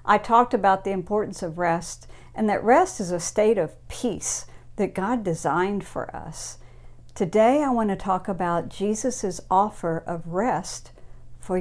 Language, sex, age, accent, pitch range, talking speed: English, female, 50-69, American, 170-210 Hz, 160 wpm